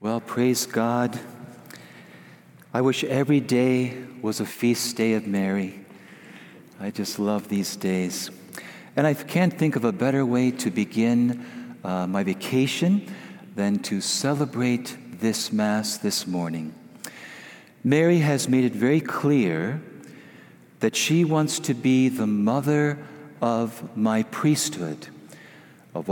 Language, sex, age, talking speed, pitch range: English, male, 50-69, 125 wpm, 110-145 Hz